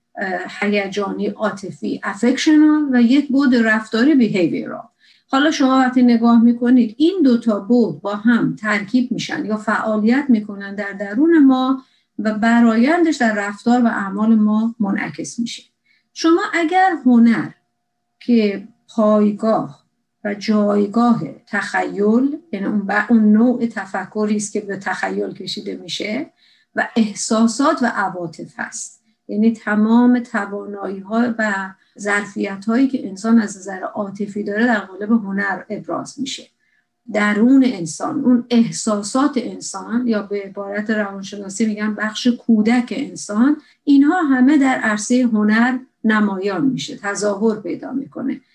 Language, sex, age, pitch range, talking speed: Persian, female, 50-69, 205-250 Hz, 120 wpm